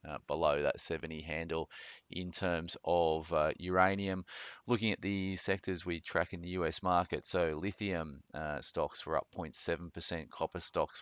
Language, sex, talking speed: English, male, 160 wpm